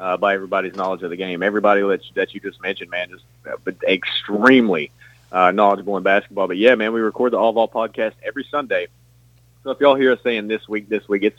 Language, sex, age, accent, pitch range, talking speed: English, male, 30-49, American, 105-120 Hz, 235 wpm